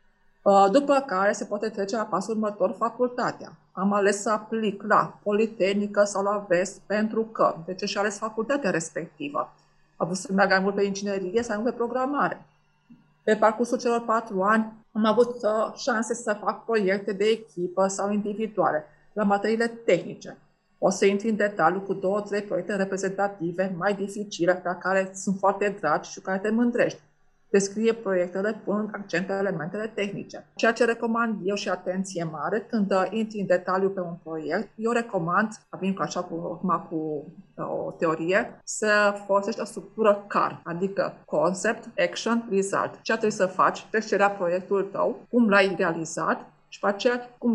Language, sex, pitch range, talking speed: Romanian, female, 190-220 Hz, 165 wpm